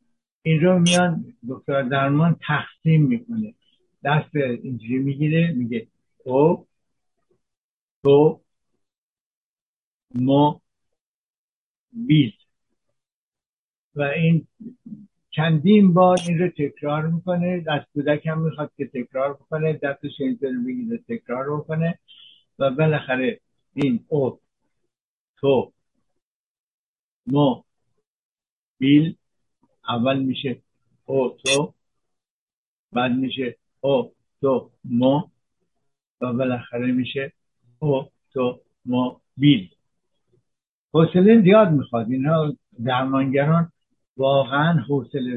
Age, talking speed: 60-79, 85 wpm